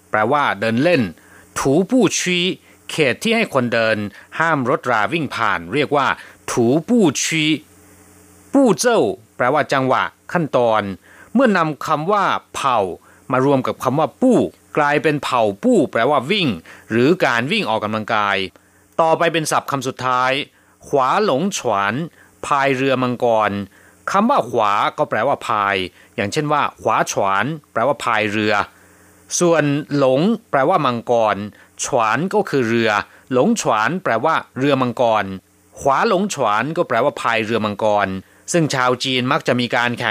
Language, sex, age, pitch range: Thai, male, 30-49, 105-155 Hz